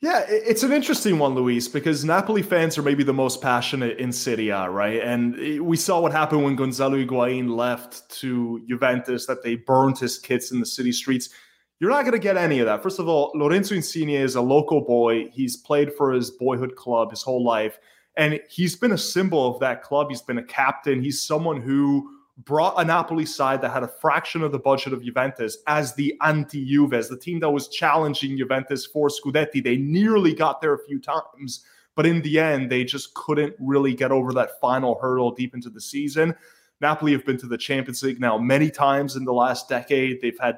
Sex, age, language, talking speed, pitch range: male, 20-39, English, 210 wpm, 125-155 Hz